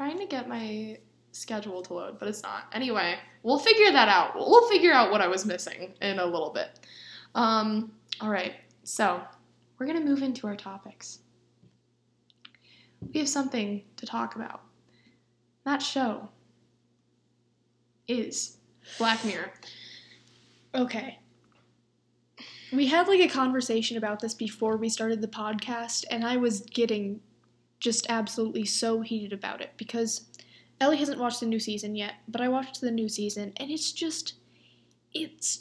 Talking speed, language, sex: 150 wpm, English, female